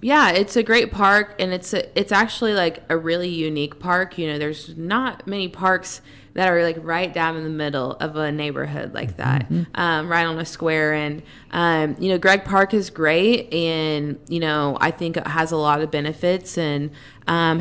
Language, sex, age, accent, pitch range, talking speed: English, female, 20-39, American, 150-175 Hz, 205 wpm